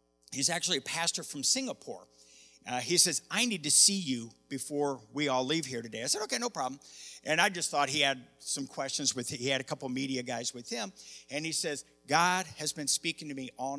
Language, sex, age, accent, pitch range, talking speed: English, male, 50-69, American, 125-160 Hz, 225 wpm